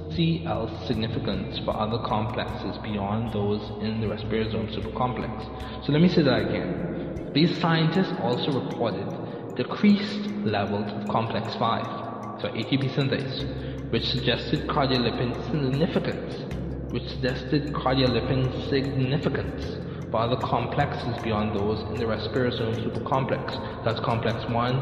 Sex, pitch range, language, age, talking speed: male, 105-135 Hz, English, 20-39, 120 wpm